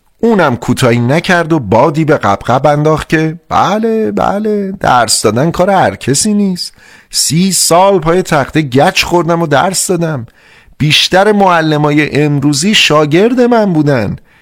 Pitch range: 120-175 Hz